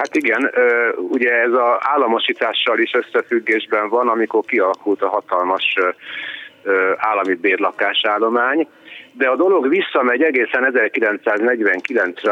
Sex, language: male, Hungarian